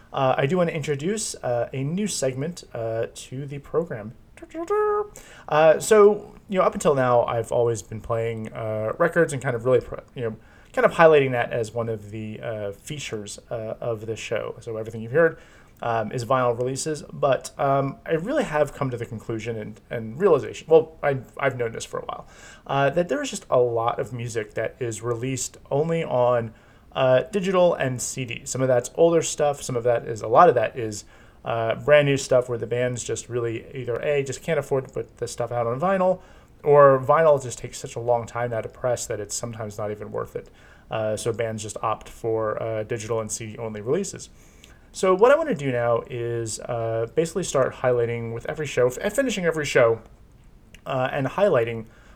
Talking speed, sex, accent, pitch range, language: 205 wpm, male, American, 115-150 Hz, English